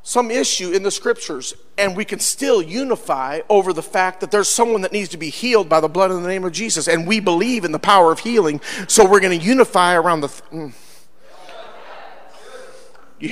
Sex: male